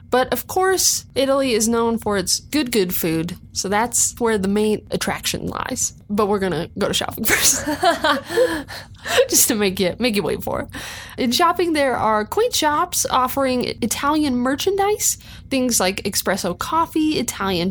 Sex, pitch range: female, 210-295 Hz